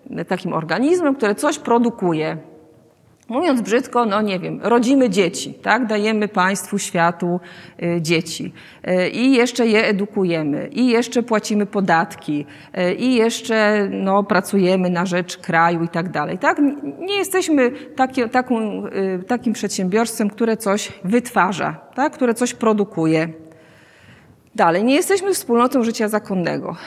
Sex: female